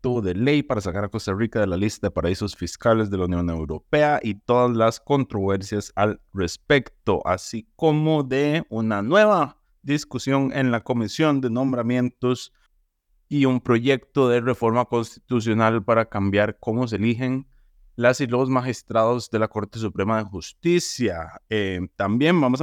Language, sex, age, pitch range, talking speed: Spanish, male, 30-49, 105-145 Hz, 155 wpm